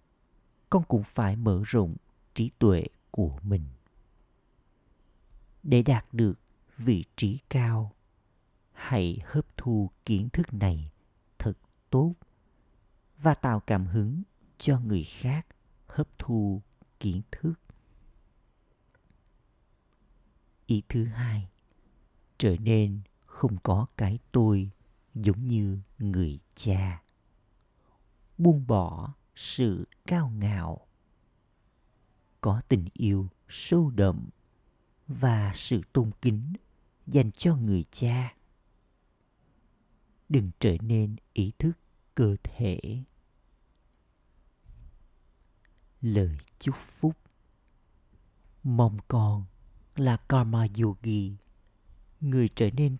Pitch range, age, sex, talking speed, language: 100-125 Hz, 50-69, male, 95 wpm, Vietnamese